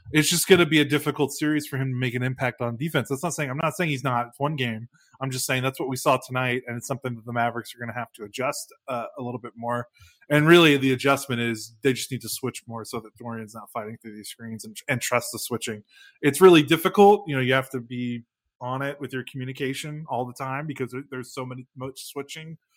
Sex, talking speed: male, 255 wpm